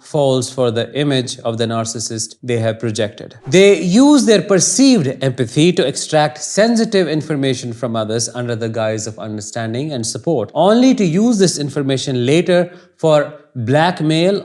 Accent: Indian